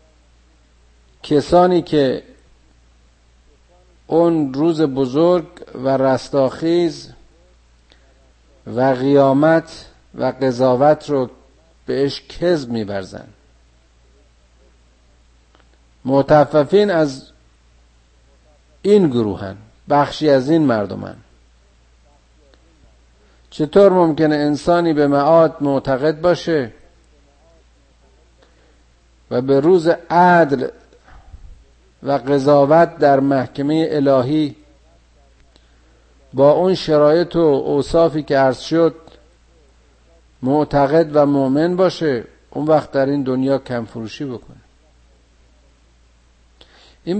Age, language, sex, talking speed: 50-69, Persian, male, 75 wpm